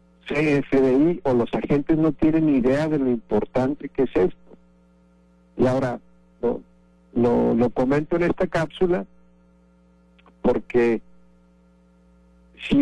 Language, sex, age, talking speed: Spanish, male, 50-69, 105 wpm